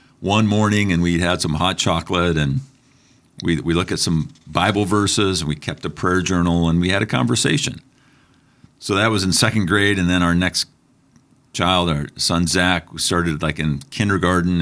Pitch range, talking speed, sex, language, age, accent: 85-125 Hz, 195 wpm, male, English, 50-69, American